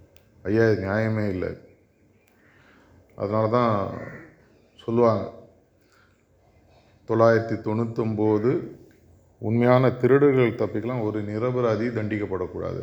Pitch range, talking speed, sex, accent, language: 95-120 Hz, 65 wpm, male, native, Tamil